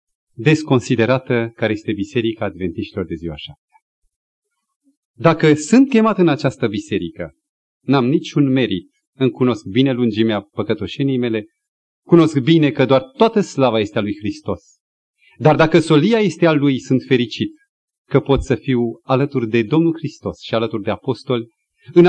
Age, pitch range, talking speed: 30-49, 115-180 Hz, 145 wpm